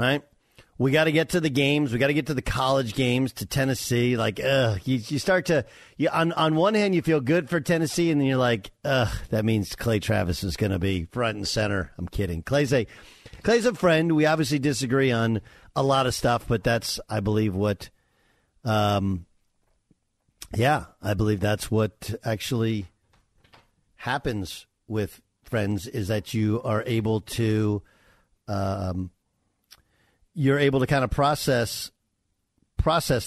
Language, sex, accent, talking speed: English, male, American, 165 wpm